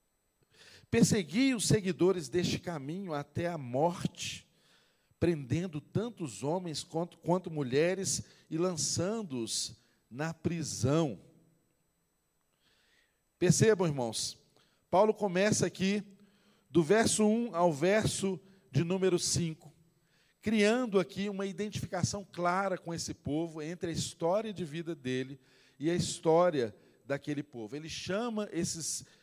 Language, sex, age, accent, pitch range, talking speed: Portuguese, male, 50-69, Brazilian, 145-190 Hz, 110 wpm